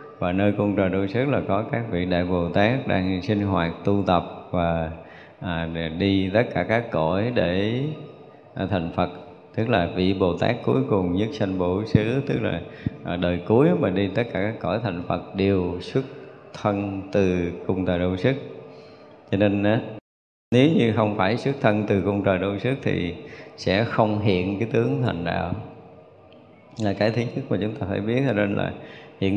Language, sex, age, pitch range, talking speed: Vietnamese, male, 20-39, 90-115 Hz, 195 wpm